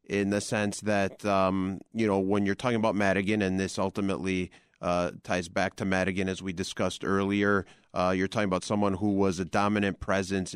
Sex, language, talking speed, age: male, English, 195 wpm, 30-49